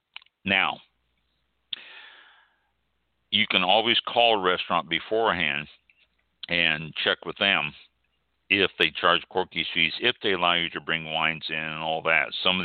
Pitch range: 75-90 Hz